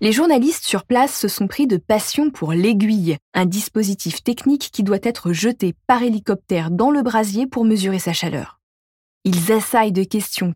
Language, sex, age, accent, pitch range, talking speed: French, female, 20-39, French, 170-220 Hz, 175 wpm